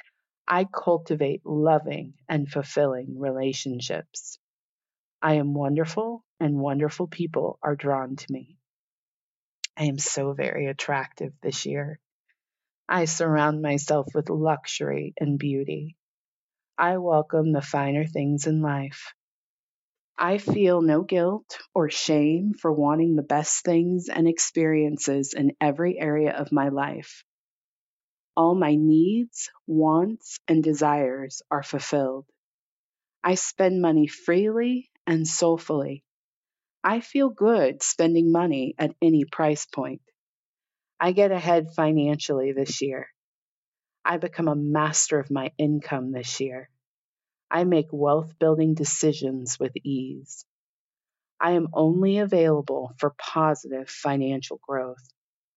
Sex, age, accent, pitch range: female, 30-49, American, 140-165 Hz